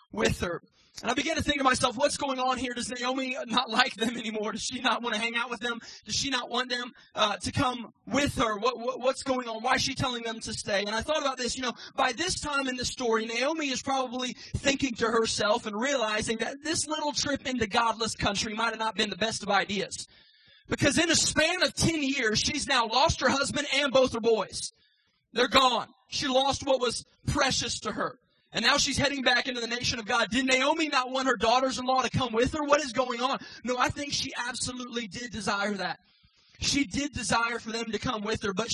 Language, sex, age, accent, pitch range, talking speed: English, male, 20-39, American, 220-260 Hz, 235 wpm